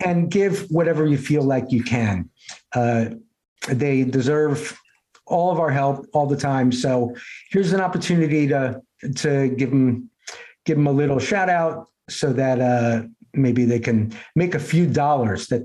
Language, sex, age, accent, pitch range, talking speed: English, male, 50-69, American, 140-205 Hz, 165 wpm